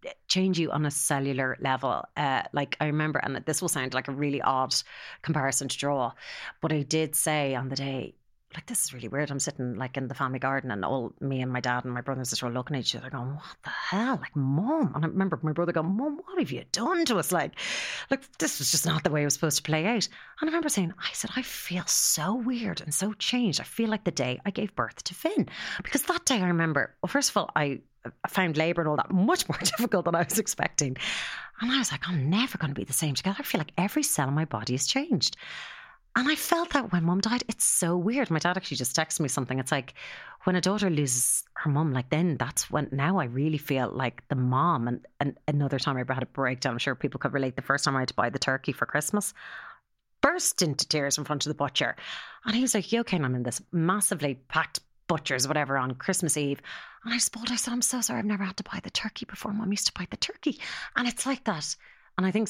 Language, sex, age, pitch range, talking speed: English, female, 30-49, 135-200 Hz, 260 wpm